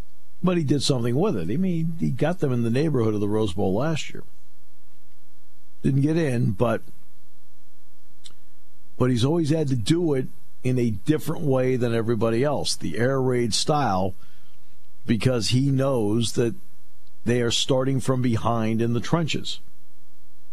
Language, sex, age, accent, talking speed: English, male, 50-69, American, 160 wpm